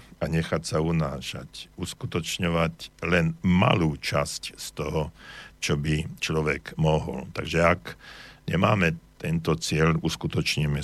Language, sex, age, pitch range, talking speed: Slovak, male, 60-79, 80-90 Hz, 110 wpm